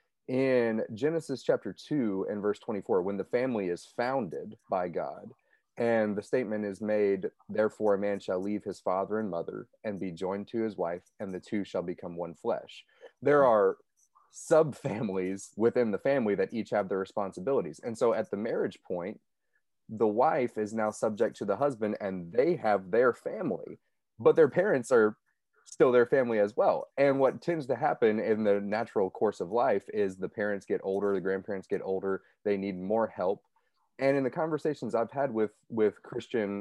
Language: English